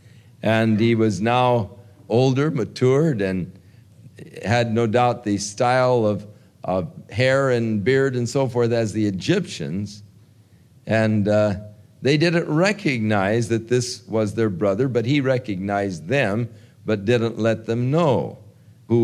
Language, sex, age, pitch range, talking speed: English, male, 50-69, 100-125 Hz, 135 wpm